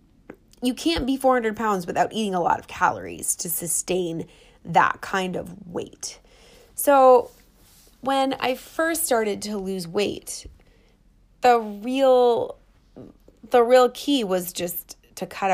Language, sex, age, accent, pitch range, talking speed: English, female, 20-39, American, 175-220 Hz, 130 wpm